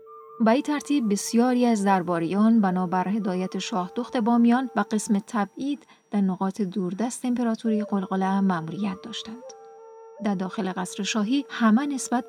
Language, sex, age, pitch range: Persian, female, 30-49, 195-240 Hz